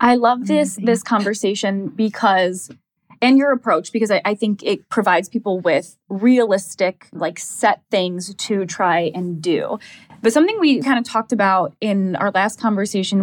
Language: English